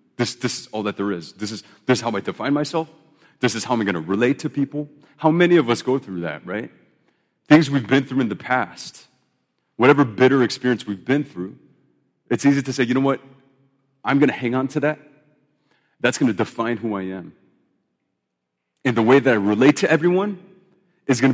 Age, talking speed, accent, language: 30-49, 215 wpm, American, English